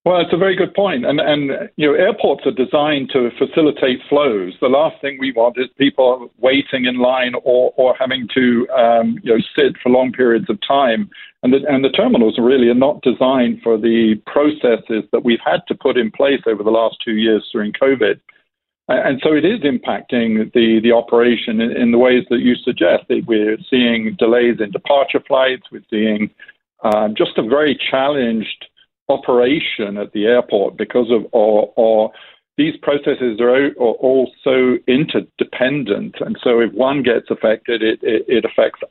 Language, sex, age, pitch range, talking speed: English, male, 50-69, 115-140 Hz, 180 wpm